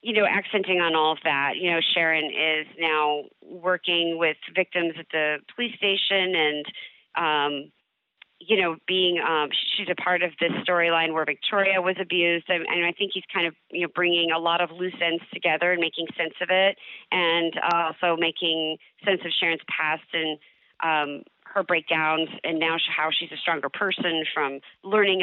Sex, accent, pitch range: female, American, 155-185 Hz